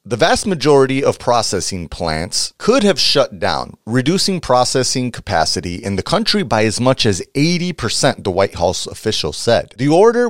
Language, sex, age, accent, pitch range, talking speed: English, male, 30-49, American, 100-155 Hz, 165 wpm